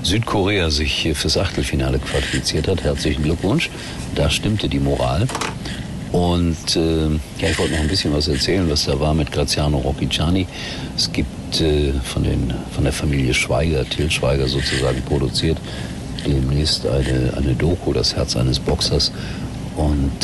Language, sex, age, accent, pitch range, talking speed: German, male, 60-79, German, 65-80 Hz, 150 wpm